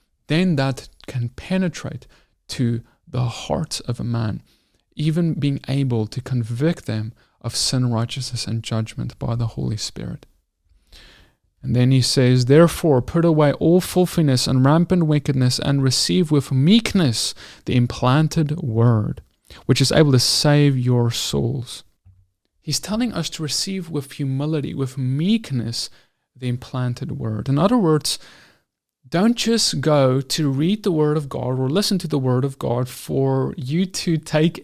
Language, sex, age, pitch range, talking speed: English, male, 30-49, 125-160 Hz, 150 wpm